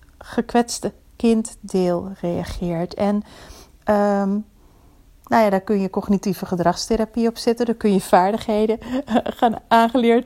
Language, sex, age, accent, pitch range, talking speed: Dutch, female, 40-59, Dutch, 200-235 Hz, 130 wpm